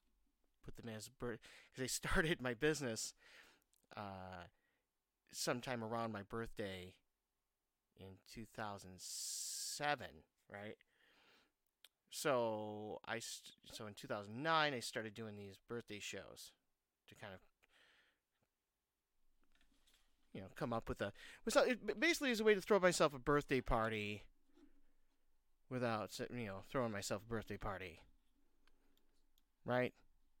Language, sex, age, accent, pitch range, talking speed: English, male, 30-49, American, 105-165 Hz, 115 wpm